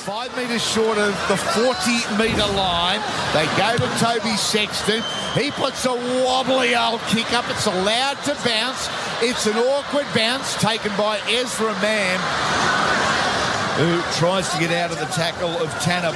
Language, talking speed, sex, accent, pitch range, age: English, 150 wpm, male, Australian, 190-255 Hz, 50-69